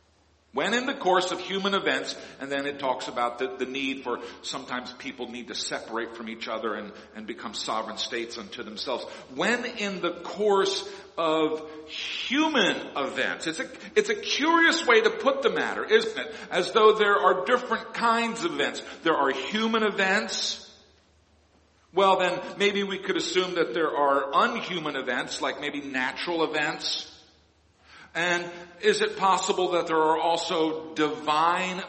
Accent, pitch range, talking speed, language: American, 150-205 Hz, 160 wpm, English